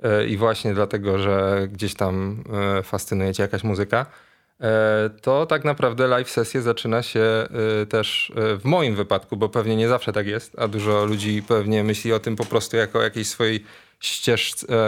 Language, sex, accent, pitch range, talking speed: Polish, male, native, 105-120 Hz, 165 wpm